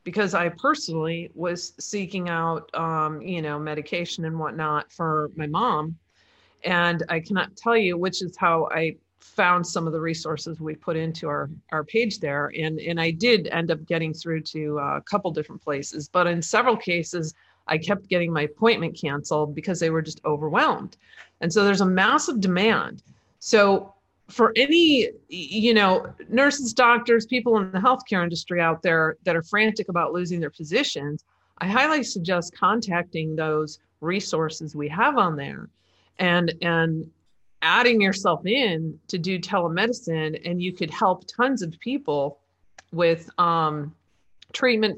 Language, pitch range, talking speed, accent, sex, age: English, 160-200 Hz, 160 wpm, American, female, 40-59